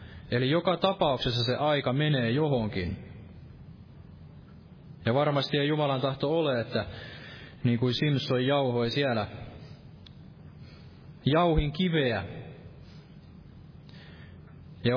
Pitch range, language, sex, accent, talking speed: 115-145 Hz, Finnish, male, native, 90 wpm